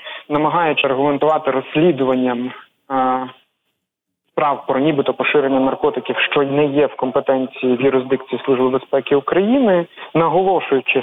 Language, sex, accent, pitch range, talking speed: Ukrainian, male, native, 135-155 Hz, 105 wpm